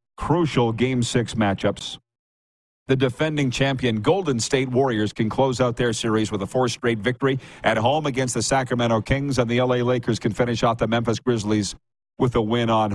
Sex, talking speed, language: male, 185 wpm, English